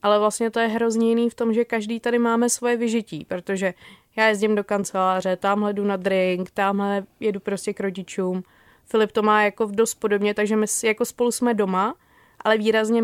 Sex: female